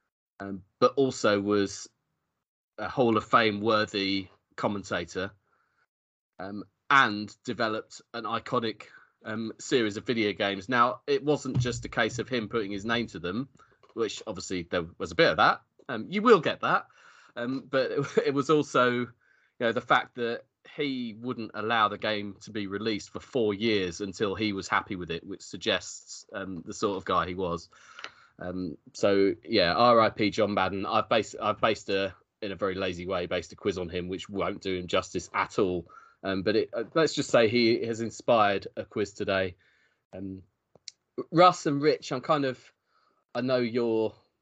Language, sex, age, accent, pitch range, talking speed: English, male, 30-49, British, 95-120 Hz, 180 wpm